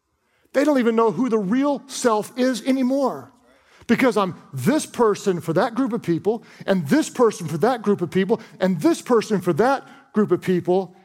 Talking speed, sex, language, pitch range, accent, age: 190 wpm, male, English, 185-245 Hz, American, 40-59